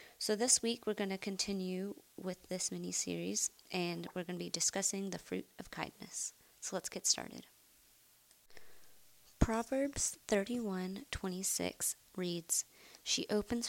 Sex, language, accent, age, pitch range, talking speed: female, English, American, 20-39, 170-205 Hz, 130 wpm